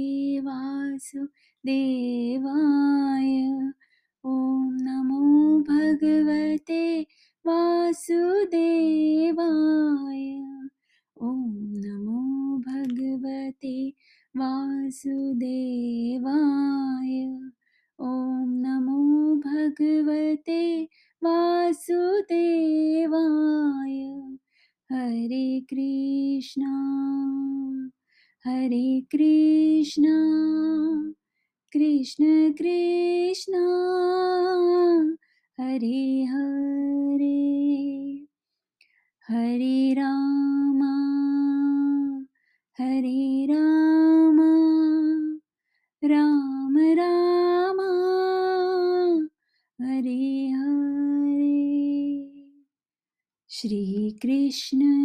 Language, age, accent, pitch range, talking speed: English, 20-39, Indian, 270-315 Hz, 35 wpm